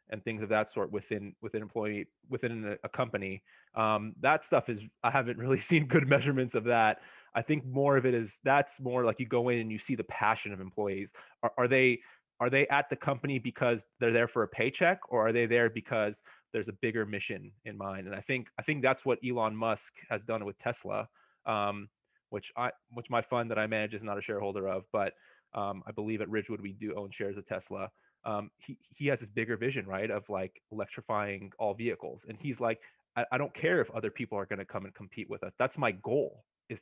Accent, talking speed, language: American, 230 wpm, English